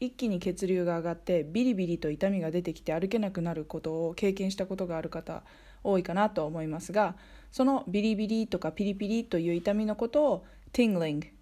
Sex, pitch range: female, 175-245 Hz